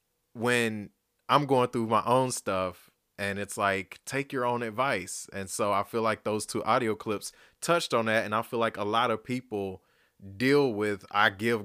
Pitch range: 95-125 Hz